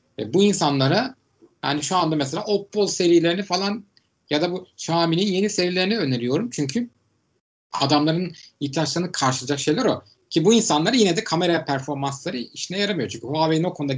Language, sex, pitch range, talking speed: Turkish, male, 140-175 Hz, 150 wpm